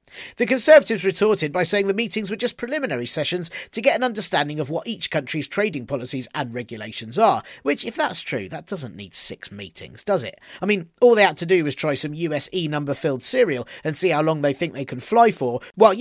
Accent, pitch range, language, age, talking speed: British, 150-210 Hz, English, 40-59, 225 wpm